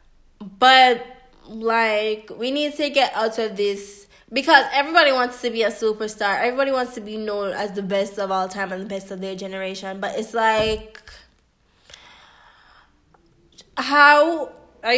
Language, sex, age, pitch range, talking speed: English, female, 10-29, 210-245 Hz, 150 wpm